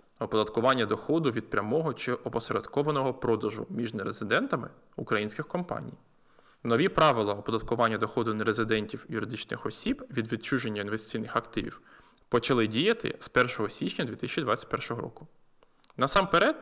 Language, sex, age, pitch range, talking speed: Ukrainian, male, 20-39, 115-170 Hz, 110 wpm